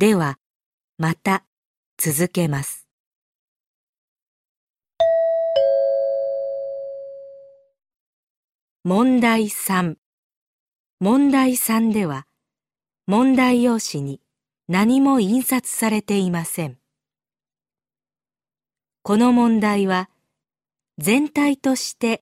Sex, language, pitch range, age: female, Vietnamese, 165-250 Hz, 40-59